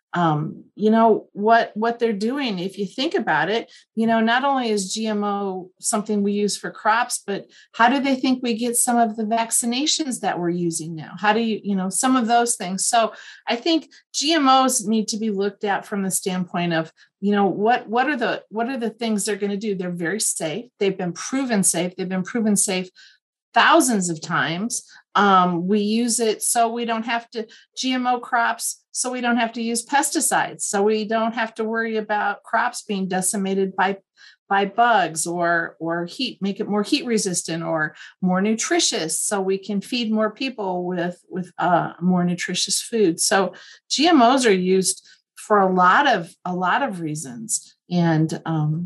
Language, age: English, 40-59